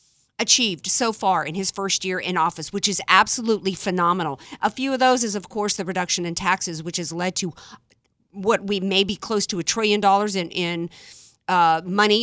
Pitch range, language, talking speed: 180-230 Hz, English, 200 wpm